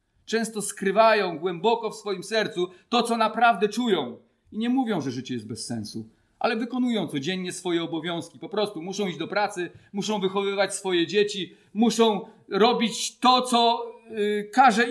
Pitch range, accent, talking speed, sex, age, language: 165-235 Hz, native, 155 wpm, male, 40-59, Polish